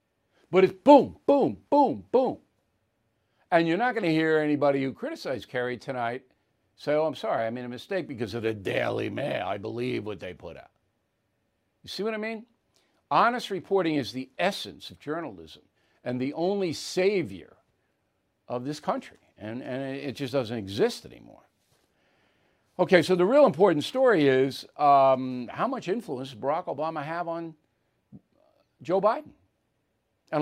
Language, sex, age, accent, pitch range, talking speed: English, male, 60-79, American, 125-180 Hz, 160 wpm